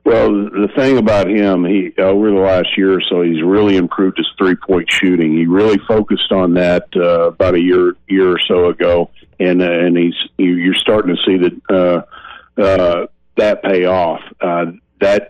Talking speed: 185 wpm